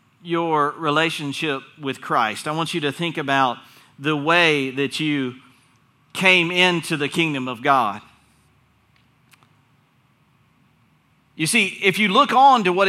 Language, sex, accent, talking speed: English, male, American, 130 wpm